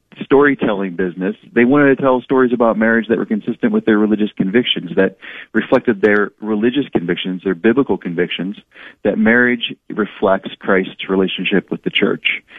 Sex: male